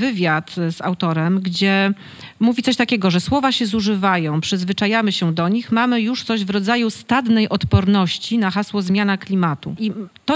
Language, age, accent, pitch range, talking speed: Polish, 40-59, native, 180-235 Hz, 160 wpm